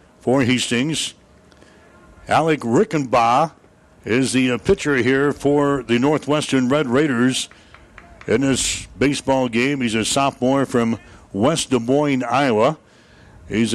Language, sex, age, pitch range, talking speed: English, male, 60-79, 120-140 Hz, 120 wpm